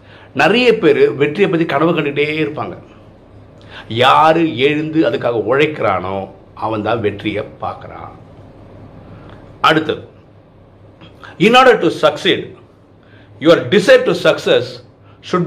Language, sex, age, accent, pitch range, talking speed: Tamil, male, 50-69, native, 105-160 Hz, 45 wpm